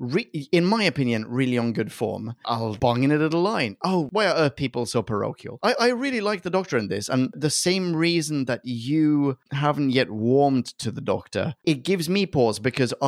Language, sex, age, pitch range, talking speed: English, male, 30-49, 115-150 Hz, 210 wpm